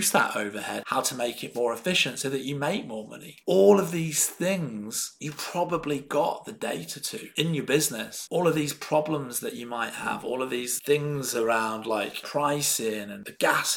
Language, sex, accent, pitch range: English, male, British, 120-165 Hz